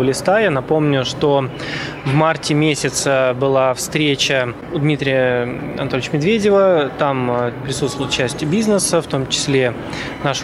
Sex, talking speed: male, 120 wpm